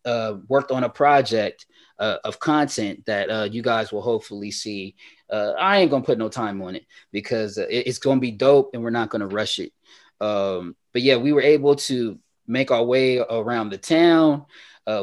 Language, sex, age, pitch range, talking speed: English, male, 20-39, 110-140 Hz, 210 wpm